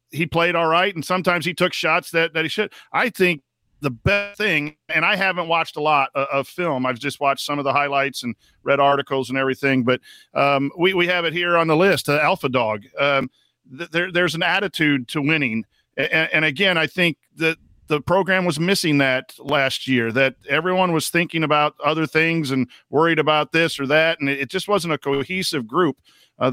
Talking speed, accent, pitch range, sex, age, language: 210 wpm, American, 135-170 Hz, male, 50-69, English